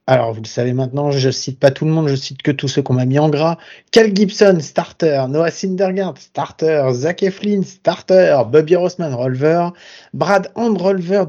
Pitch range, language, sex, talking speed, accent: 135-180 Hz, French, male, 190 wpm, French